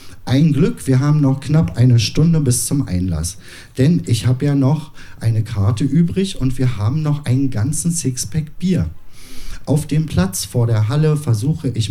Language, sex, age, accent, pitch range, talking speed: German, male, 50-69, German, 95-150 Hz, 175 wpm